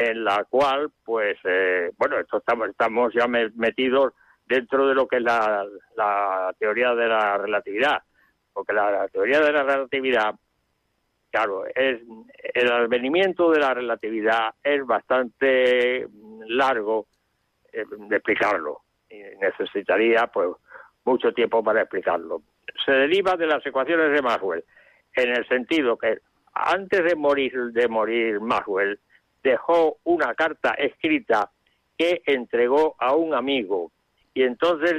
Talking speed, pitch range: 130 wpm, 120-175 Hz